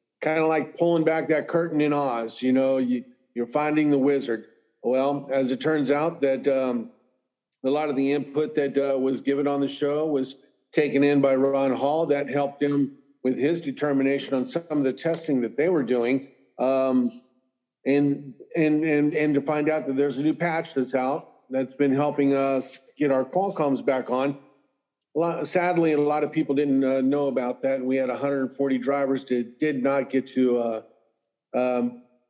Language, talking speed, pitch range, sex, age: English, 190 wpm, 130-145 Hz, male, 50-69